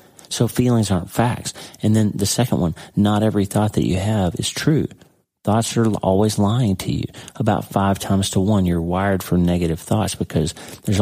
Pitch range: 85-105 Hz